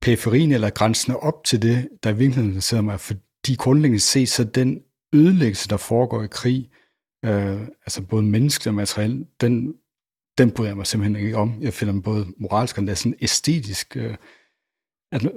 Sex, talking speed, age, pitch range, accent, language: male, 170 wpm, 60-79, 105-130 Hz, native, Danish